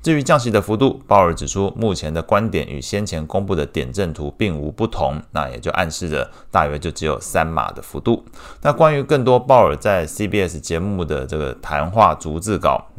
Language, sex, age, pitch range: Chinese, male, 30-49, 80-105 Hz